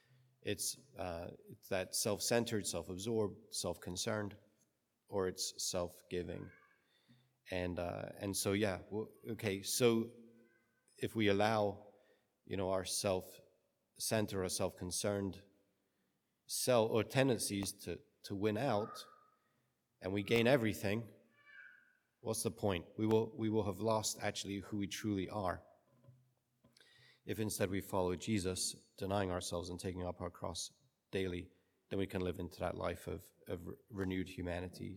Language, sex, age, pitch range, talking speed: English, male, 40-59, 90-110 Hz, 130 wpm